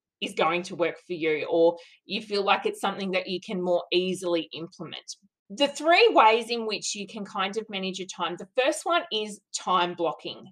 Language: English